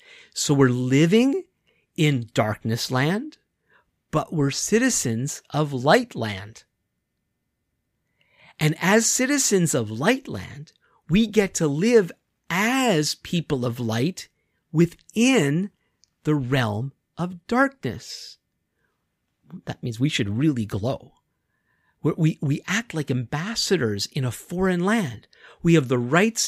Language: English